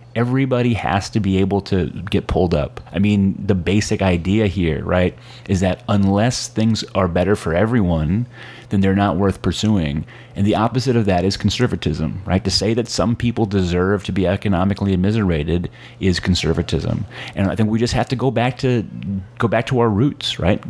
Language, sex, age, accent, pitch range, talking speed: English, male, 30-49, American, 95-115 Hz, 190 wpm